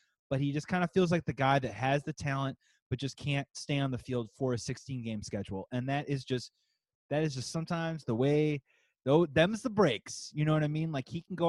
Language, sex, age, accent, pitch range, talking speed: English, male, 30-49, American, 125-160 Hz, 250 wpm